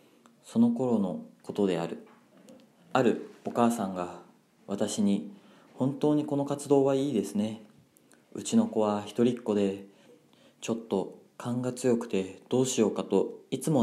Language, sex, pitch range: Japanese, male, 95-120 Hz